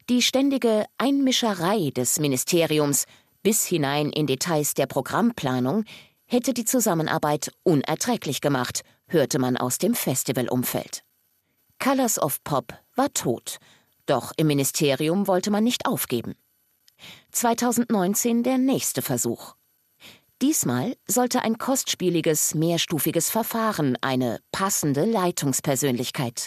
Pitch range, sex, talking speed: 140-225 Hz, female, 105 wpm